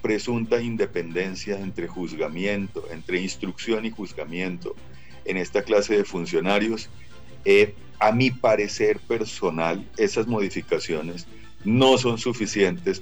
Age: 40-59